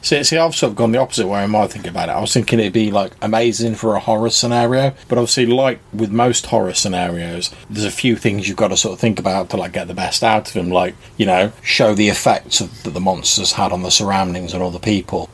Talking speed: 260 wpm